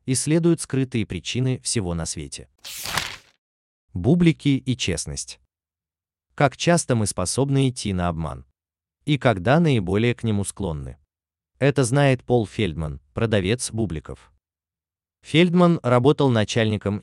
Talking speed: 110 wpm